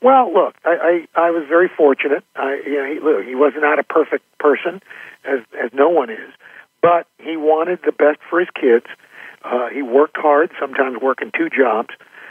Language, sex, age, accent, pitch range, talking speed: English, male, 50-69, American, 140-170 Hz, 185 wpm